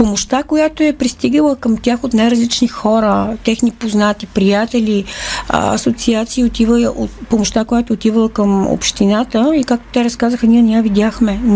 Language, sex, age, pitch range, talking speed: Bulgarian, female, 40-59, 210-240 Hz, 150 wpm